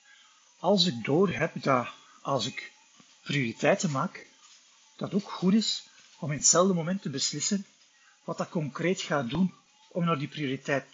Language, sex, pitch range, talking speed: Dutch, male, 150-225 Hz, 155 wpm